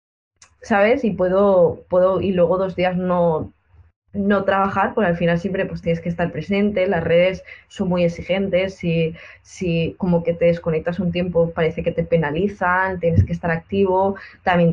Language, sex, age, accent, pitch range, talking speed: Spanish, female, 20-39, Spanish, 170-190 Hz, 170 wpm